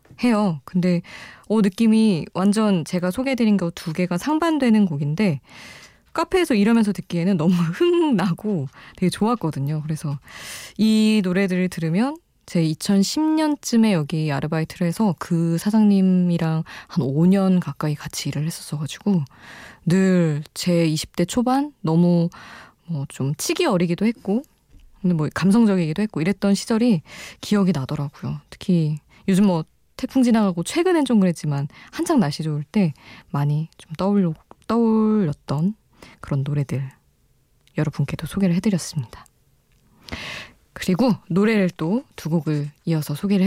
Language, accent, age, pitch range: Korean, native, 20-39, 155-215 Hz